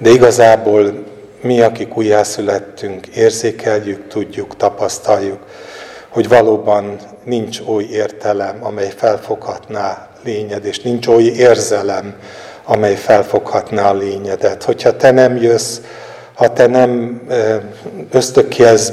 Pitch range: 105-115 Hz